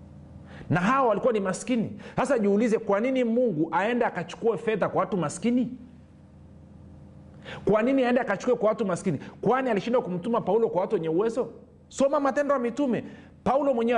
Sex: male